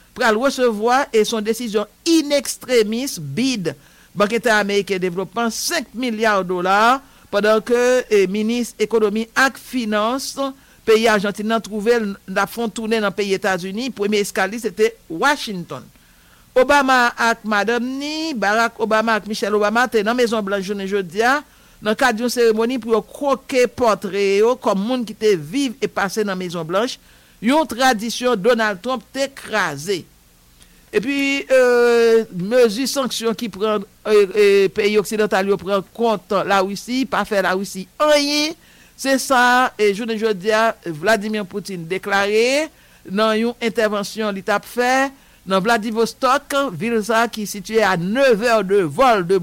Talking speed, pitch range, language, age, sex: 140 wpm, 205-250 Hz, English, 60-79, male